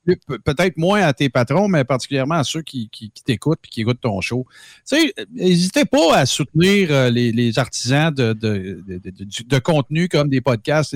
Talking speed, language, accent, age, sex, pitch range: 215 wpm, French, Canadian, 50-69, male, 125-175 Hz